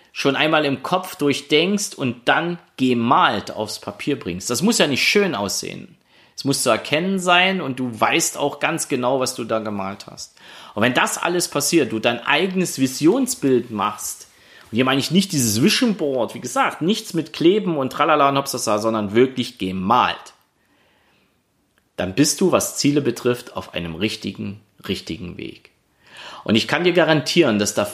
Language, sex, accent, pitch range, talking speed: German, male, German, 110-165 Hz, 170 wpm